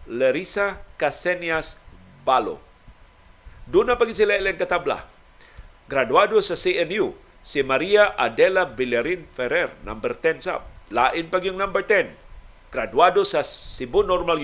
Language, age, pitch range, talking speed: Filipino, 50-69, 145-235 Hz, 110 wpm